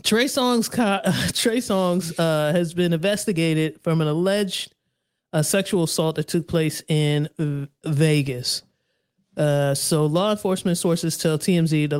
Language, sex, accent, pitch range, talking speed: English, male, American, 145-175 Hz, 125 wpm